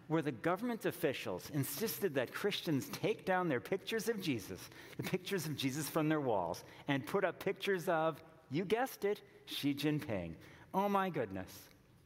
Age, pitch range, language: 50-69, 115-165 Hz, English